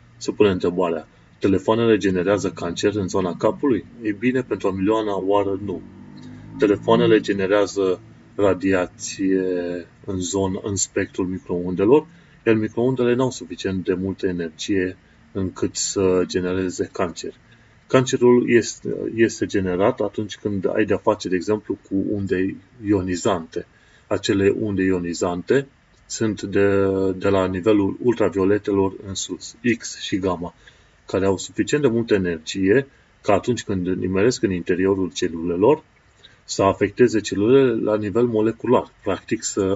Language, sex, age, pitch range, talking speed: Romanian, male, 30-49, 95-110 Hz, 130 wpm